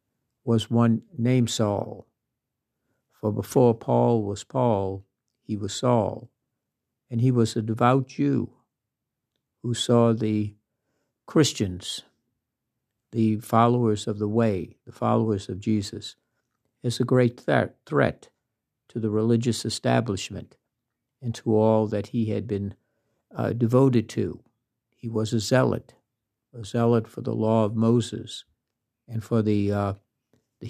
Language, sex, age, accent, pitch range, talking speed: English, male, 60-79, American, 110-120 Hz, 125 wpm